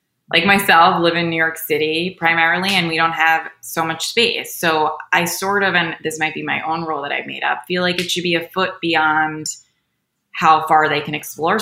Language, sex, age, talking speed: English, female, 20-39, 220 wpm